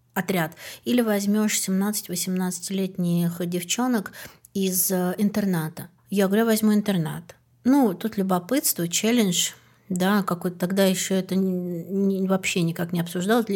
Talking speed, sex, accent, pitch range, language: 105 wpm, female, native, 185-230 Hz, Russian